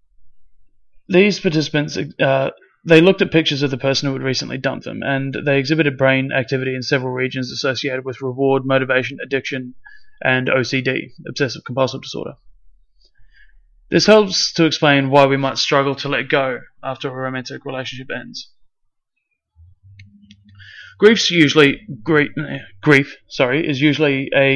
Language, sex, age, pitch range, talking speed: English, male, 30-49, 130-155 Hz, 140 wpm